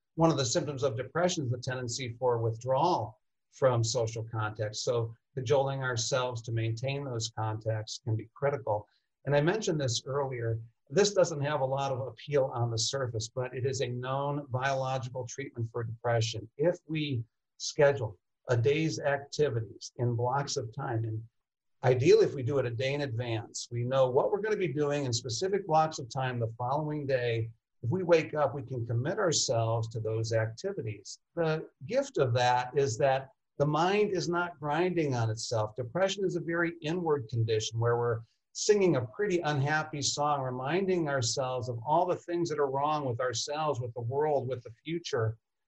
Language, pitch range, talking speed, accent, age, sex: English, 120-155 Hz, 180 wpm, American, 50-69, male